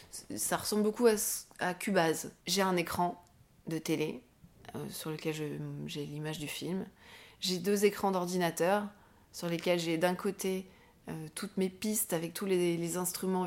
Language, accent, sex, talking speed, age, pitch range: French, French, female, 165 wpm, 30-49, 165-200 Hz